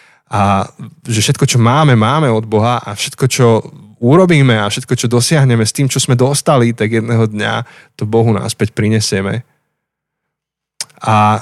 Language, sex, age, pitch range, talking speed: Slovak, male, 20-39, 110-140 Hz, 150 wpm